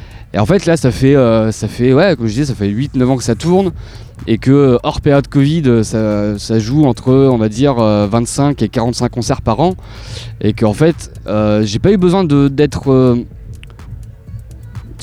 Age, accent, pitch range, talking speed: 20-39, French, 110-150 Hz, 185 wpm